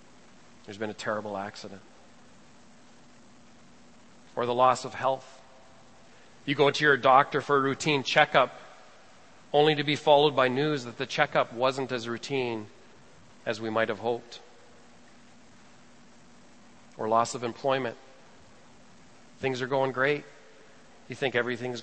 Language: English